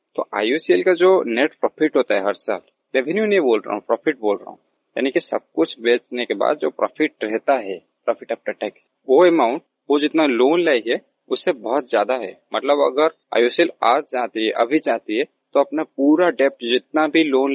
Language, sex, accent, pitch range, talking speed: Hindi, male, native, 130-185 Hz, 195 wpm